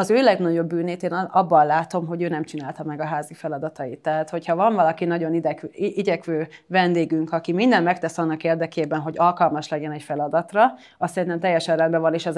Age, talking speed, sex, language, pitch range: 30-49, 195 wpm, female, Hungarian, 160-180 Hz